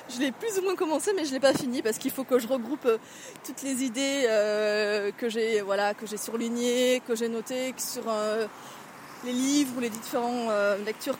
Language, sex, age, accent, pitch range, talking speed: French, female, 20-39, French, 220-265 Hz, 200 wpm